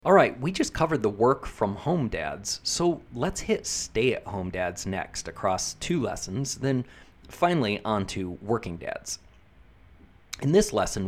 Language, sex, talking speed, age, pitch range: English, male, 150 wpm, 30-49, 95-115 Hz